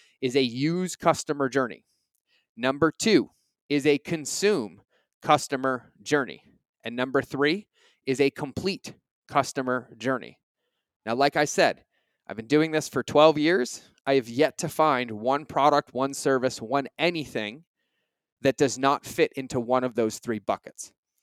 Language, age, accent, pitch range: English, 30-49, American, 125-150 Hz